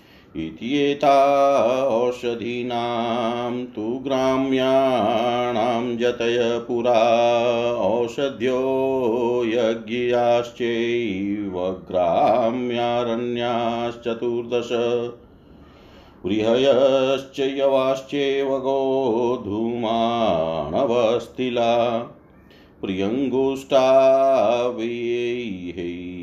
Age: 50-69